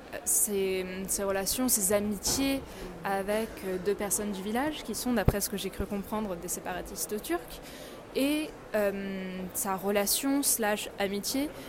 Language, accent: French, French